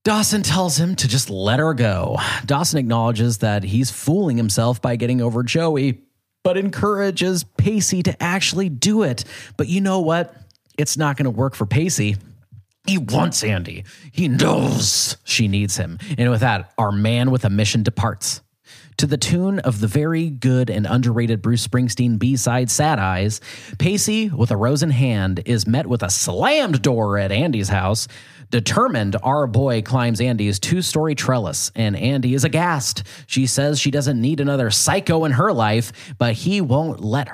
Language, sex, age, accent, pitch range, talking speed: English, male, 30-49, American, 110-145 Hz, 170 wpm